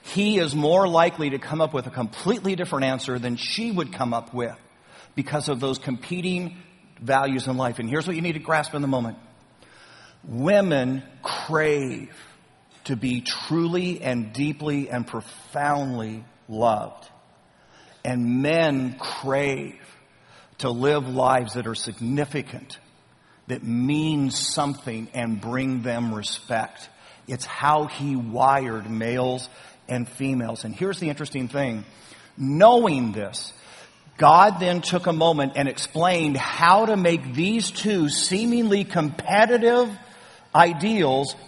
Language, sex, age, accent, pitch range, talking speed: English, male, 50-69, American, 130-175 Hz, 130 wpm